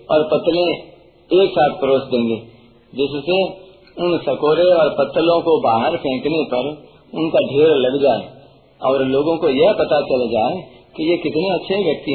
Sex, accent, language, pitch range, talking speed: male, native, Hindi, 135-170 Hz, 150 wpm